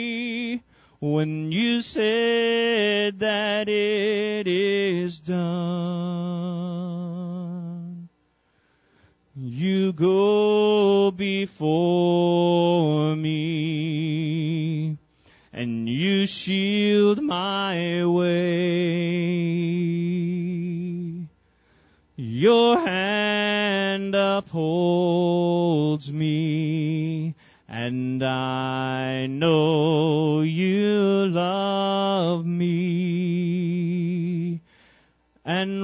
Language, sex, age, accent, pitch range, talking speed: English, male, 30-49, American, 155-195 Hz, 45 wpm